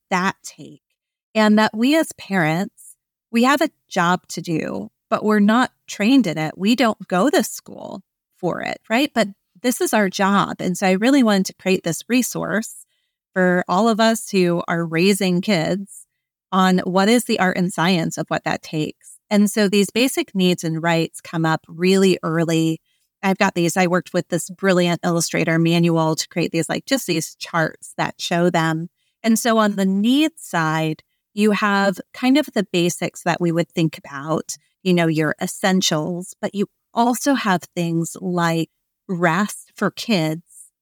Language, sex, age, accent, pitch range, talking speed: English, female, 30-49, American, 170-210 Hz, 180 wpm